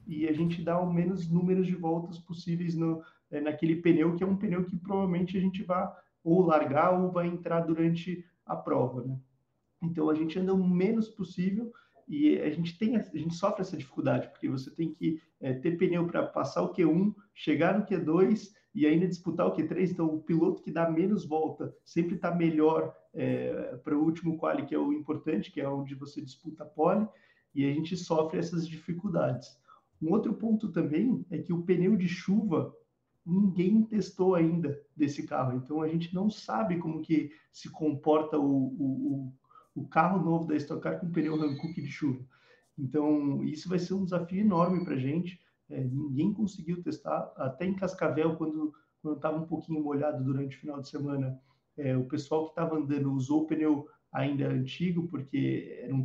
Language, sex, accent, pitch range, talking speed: Portuguese, male, Brazilian, 150-180 Hz, 185 wpm